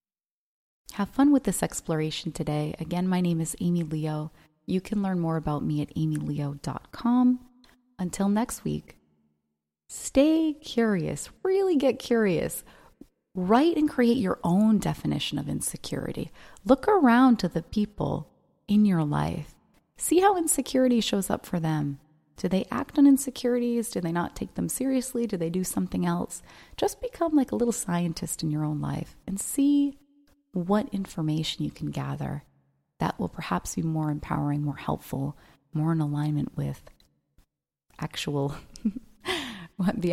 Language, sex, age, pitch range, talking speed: English, female, 30-49, 140-225 Hz, 145 wpm